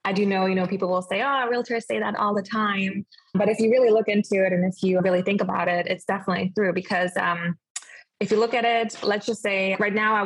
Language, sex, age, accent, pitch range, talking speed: English, female, 20-39, American, 185-210 Hz, 265 wpm